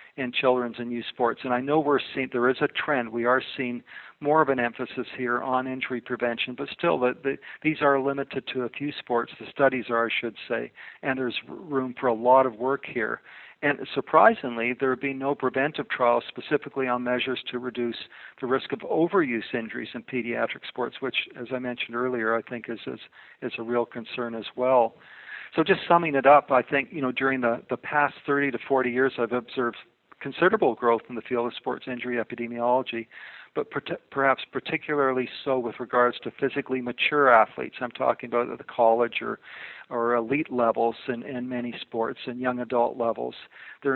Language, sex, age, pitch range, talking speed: English, male, 50-69, 120-135 Hz, 195 wpm